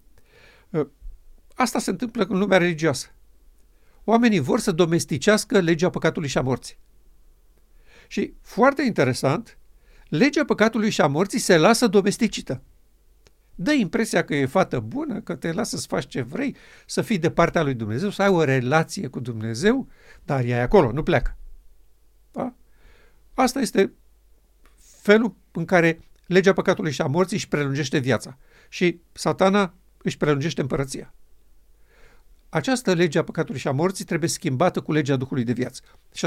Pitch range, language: 140-195 Hz, Romanian